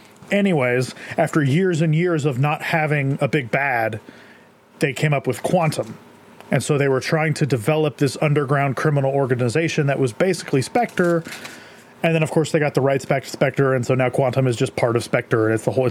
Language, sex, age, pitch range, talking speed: English, male, 30-49, 125-160 Hz, 210 wpm